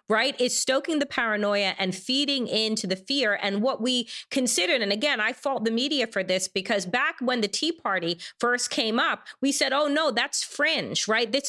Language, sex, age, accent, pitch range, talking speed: English, female, 30-49, American, 225-300 Hz, 205 wpm